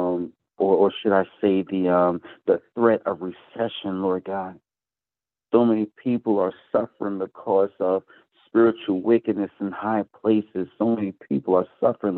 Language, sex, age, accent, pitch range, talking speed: English, male, 50-69, American, 90-110 Hz, 140 wpm